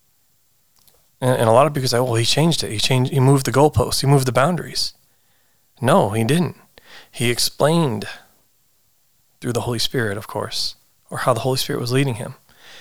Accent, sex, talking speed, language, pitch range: American, male, 180 wpm, English, 110-130 Hz